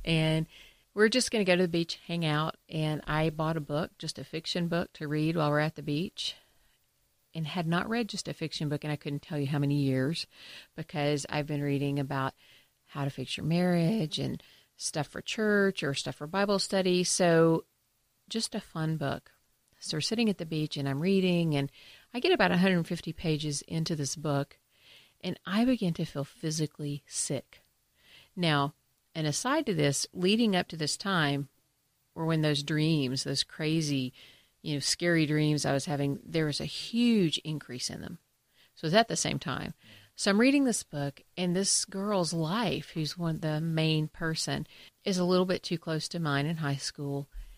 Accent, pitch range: American, 145-185 Hz